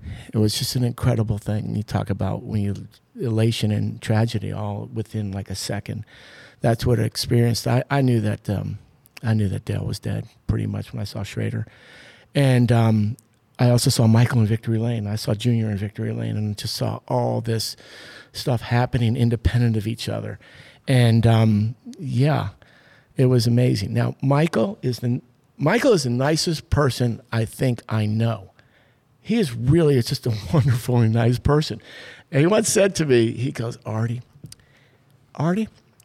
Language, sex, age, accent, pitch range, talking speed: English, male, 50-69, American, 115-140 Hz, 175 wpm